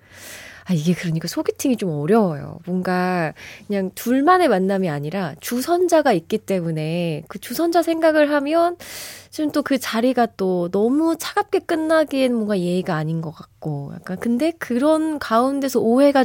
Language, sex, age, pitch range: Korean, female, 20-39, 180-260 Hz